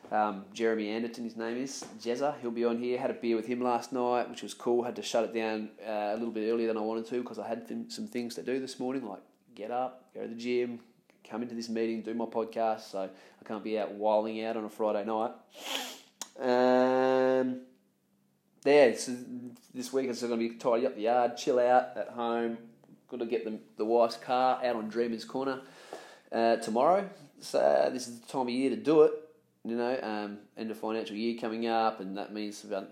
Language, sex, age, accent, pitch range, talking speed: English, male, 20-39, Australian, 110-125 Hz, 230 wpm